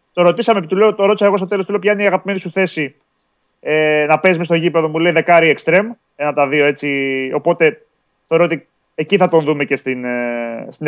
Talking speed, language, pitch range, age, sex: 200 wpm, Greek, 145-185 Hz, 30-49, male